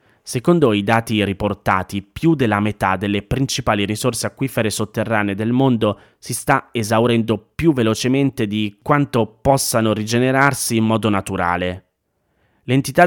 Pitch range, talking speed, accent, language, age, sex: 100-120 Hz, 125 wpm, native, Italian, 30-49, male